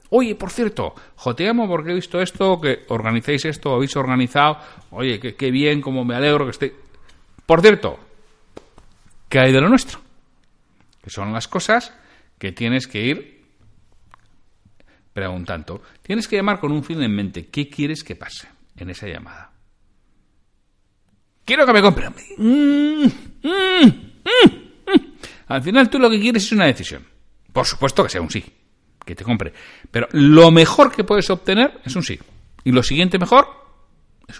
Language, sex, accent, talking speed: Spanish, male, Spanish, 155 wpm